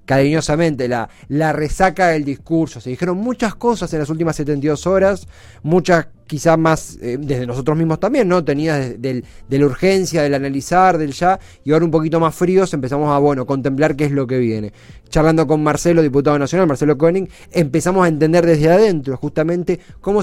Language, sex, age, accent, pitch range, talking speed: Spanish, male, 20-39, Argentinian, 135-175 Hz, 185 wpm